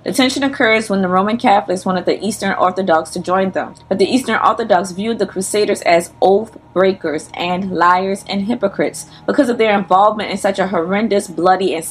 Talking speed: 190 wpm